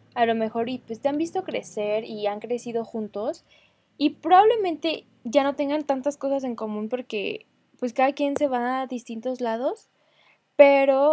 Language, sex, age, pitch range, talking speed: Spanish, female, 10-29, 210-270 Hz, 175 wpm